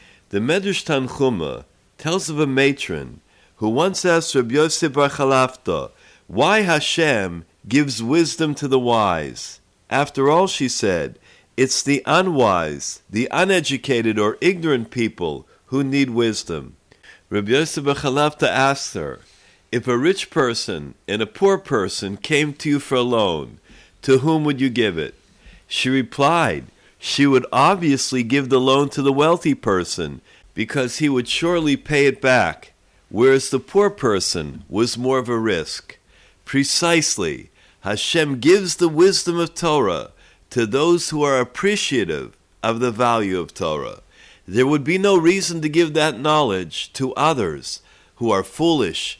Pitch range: 125-160 Hz